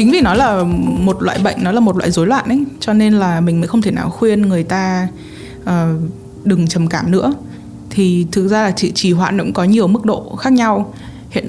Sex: female